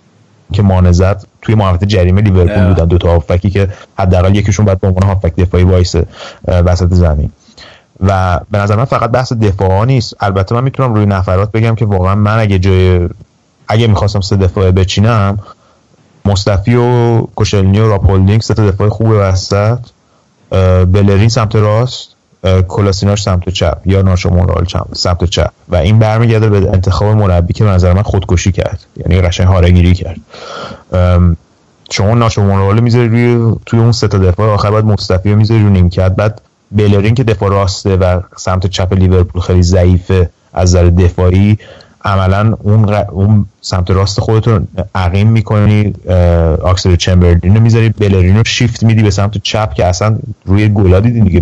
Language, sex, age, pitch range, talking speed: Persian, male, 30-49, 90-110 Hz, 155 wpm